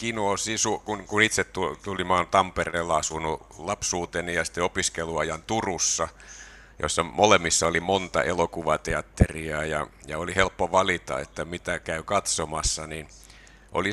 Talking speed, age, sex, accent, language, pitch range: 120 wpm, 60-79, male, native, Finnish, 80-95 Hz